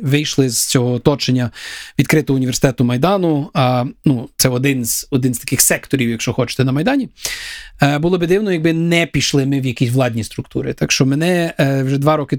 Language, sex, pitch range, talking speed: Ukrainian, male, 130-155 Hz, 190 wpm